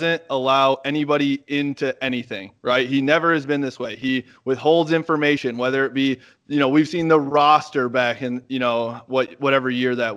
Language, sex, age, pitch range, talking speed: English, male, 20-39, 135-165 Hz, 185 wpm